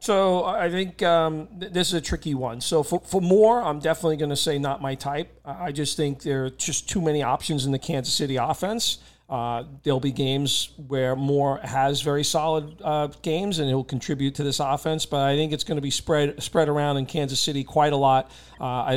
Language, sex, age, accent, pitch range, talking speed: English, male, 40-59, American, 135-160 Hz, 225 wpm